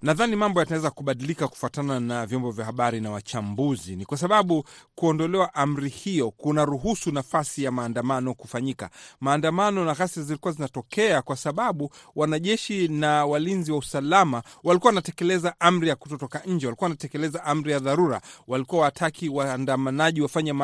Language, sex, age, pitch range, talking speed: Swahili, male, 40-59, 135-165 Hz, 150 wpm